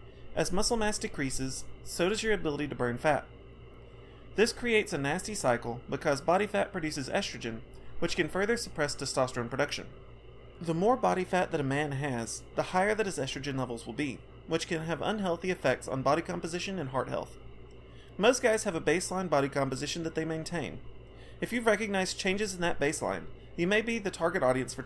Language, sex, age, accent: English, male, 30-49, American